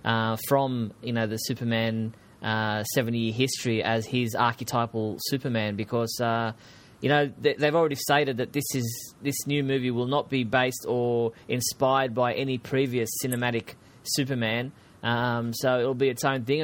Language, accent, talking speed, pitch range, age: English, Australian, 165 wpm, 115-135 Hz, 20-39